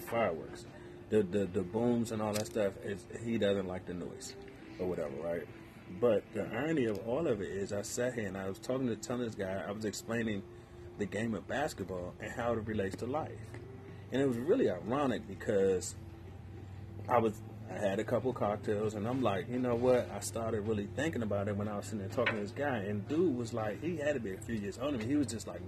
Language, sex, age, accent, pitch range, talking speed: English, male, 30-49, American, 105-125 Hz, 235 wpm